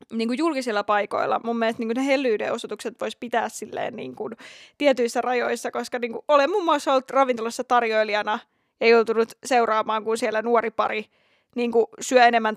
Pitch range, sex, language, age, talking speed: 235-295 Hz, female, Finnish, 20-39, 155 wpm